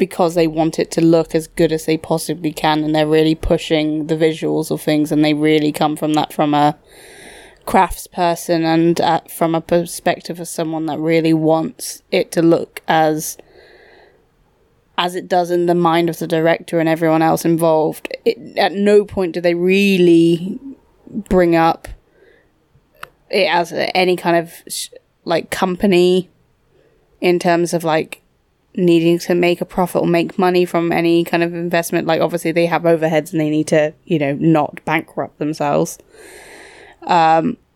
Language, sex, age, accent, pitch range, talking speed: English, female, 20-39, British, 165-195 Hz, 170 wpm